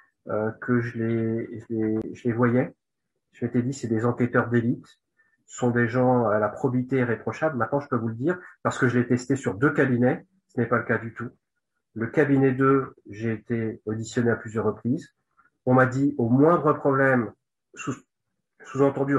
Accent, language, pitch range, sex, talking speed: French, French, 115-140 Hz, male, 190 wpm